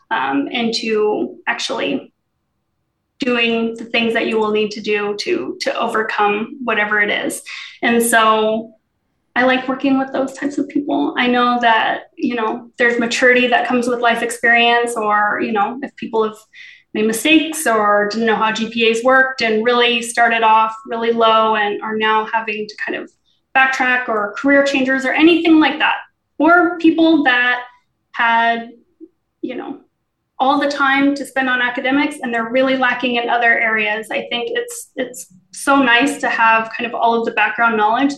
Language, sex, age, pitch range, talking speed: English, female, 20-39, 220-265 Hz, 175 wpm